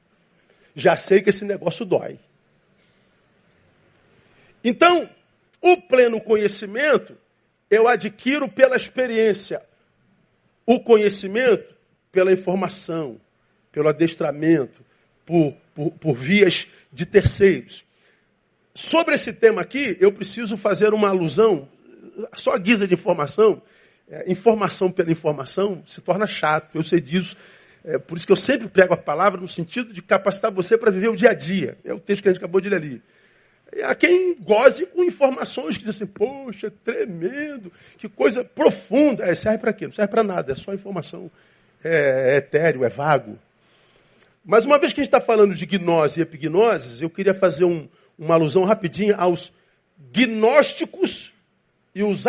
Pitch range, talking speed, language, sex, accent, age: 180-235 Hz, 150 wpm, Portuguese, male, Brazilian, 50-69